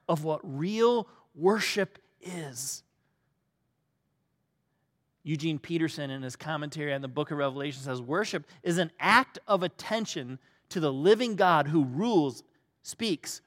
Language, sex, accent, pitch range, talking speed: English, male, American, 155-225 Hz, 130 wpm